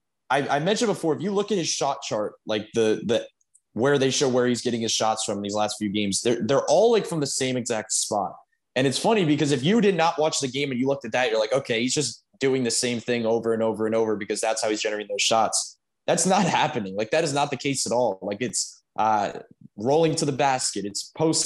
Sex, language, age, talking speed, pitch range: male, English, 20-39, 260 wpm, 115-150 Hz